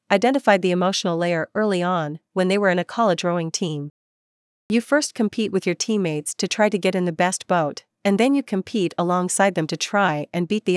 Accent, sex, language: American, female, English